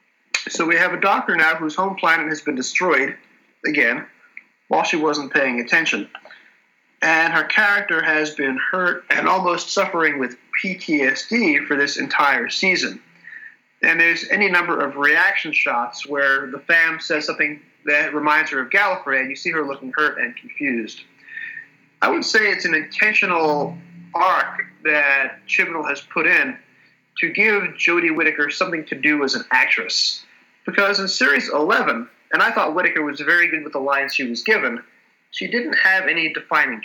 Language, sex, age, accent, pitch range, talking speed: English, male, 30-49, American, 145-180 Hz, 165 wpm